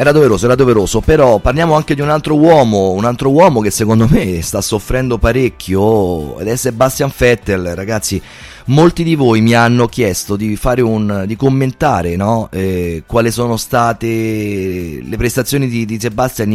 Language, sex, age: Italian, male, 30-49